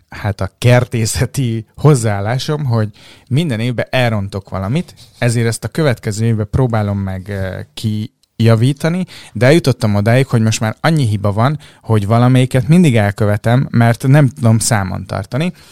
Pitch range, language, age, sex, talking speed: 100-125 Hz, Hungarian, 30-49, male, 135 wpm